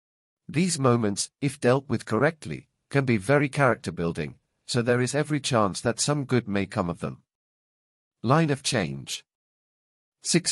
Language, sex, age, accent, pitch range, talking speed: English, male, 50-69, British, 105-140 Hz, 150 wpm